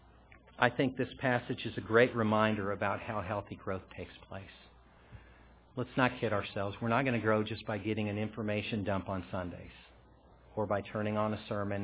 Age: 50-69